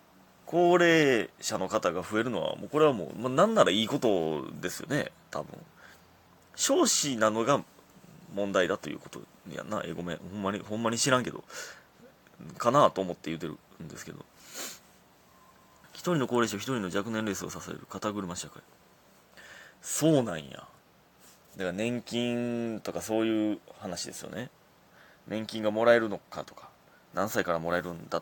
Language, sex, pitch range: Japanese, male, 95-130 Hz